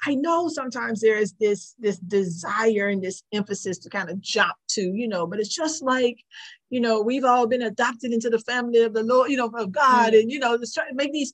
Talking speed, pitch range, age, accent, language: 235 wpm, 190-240 Hz, 40-59, American, English